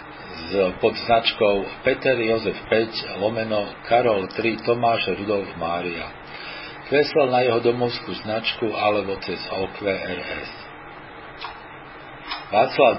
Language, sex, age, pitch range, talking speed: Slovak, male, 50-69, 105-120 Hz, 90 wpm